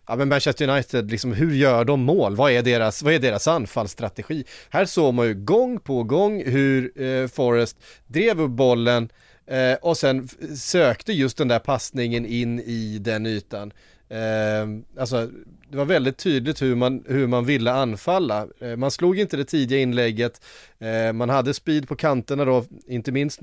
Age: 30-49